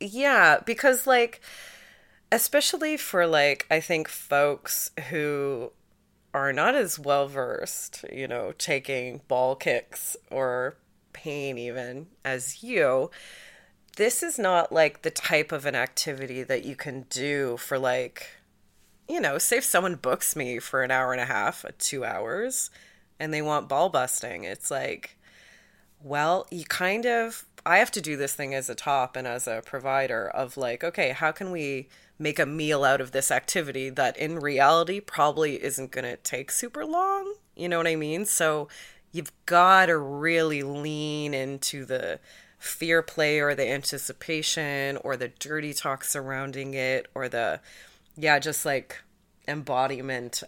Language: English